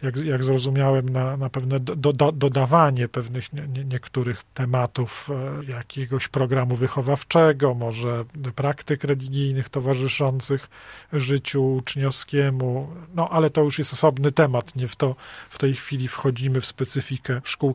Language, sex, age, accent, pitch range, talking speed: Polish, male, 40-59, native, 130-150 Hz, 135 wpm